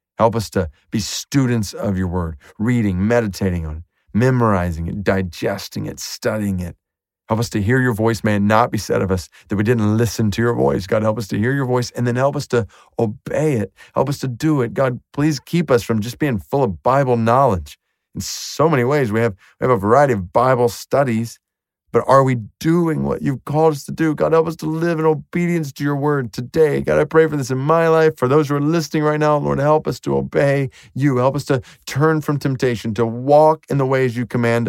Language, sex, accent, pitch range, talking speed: English, male, American, 100-145 Hz, 235 wpm